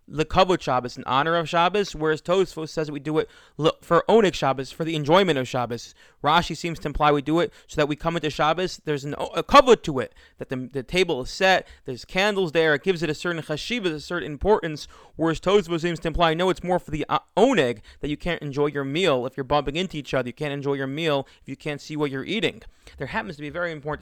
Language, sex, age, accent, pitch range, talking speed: English, male, 30-49, American, 135-165 Hz, 250 wpm